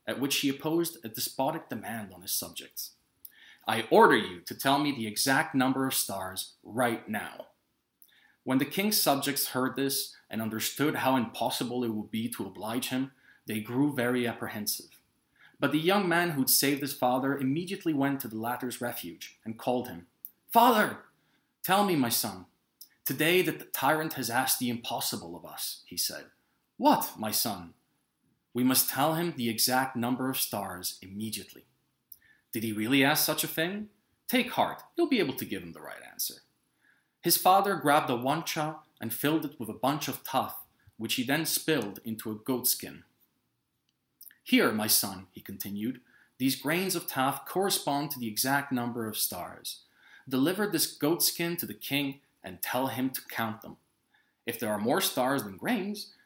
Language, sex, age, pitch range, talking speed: English, male, 30-49, 115-155 Hz, 175 wpm